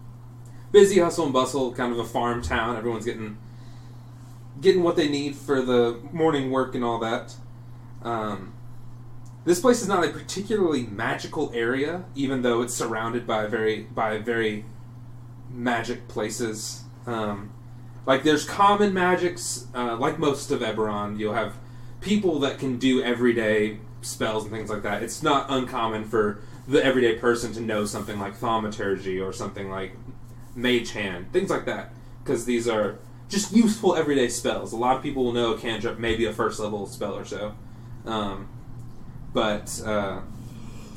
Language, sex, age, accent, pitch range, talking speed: English, male, 30-49, American, 110-125 Hz, 160 wpm